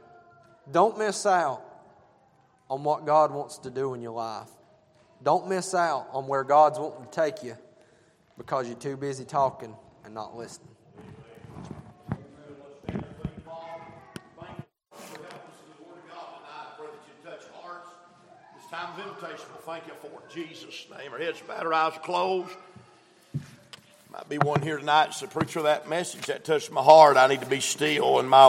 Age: 50-69